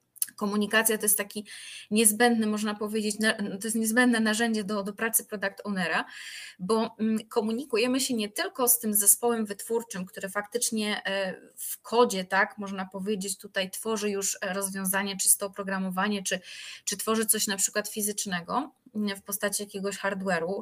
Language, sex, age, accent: Polish, female, 20-39, native